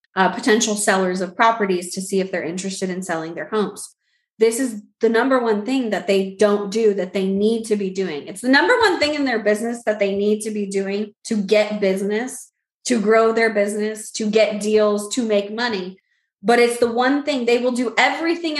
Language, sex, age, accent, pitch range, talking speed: English, female, 20-39, American, 195-245 Hz, 215 wpm